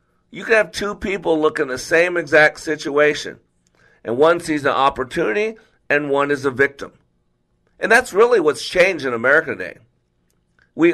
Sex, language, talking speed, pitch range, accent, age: male, English, 165 wpm, 130-175 Hz, American, 50-69